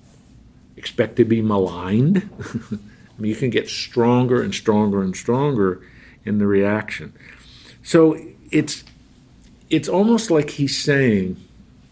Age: 50-69